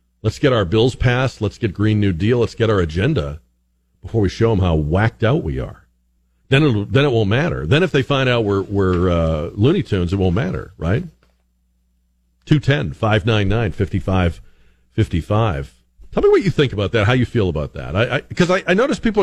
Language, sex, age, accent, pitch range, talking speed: English, male, 50-69, American, 90-135 Hz, 200 wpm